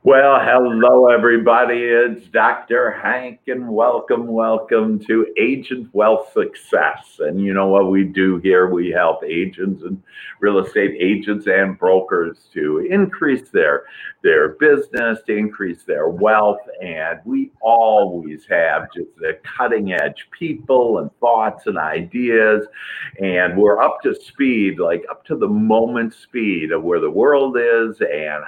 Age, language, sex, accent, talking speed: 50-69, English, male, American, 140 wpm